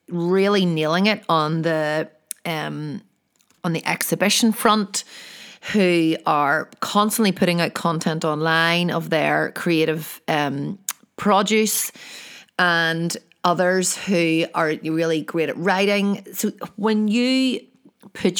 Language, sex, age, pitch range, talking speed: English, female, 30-49, 165-210 Hz, 110 wpm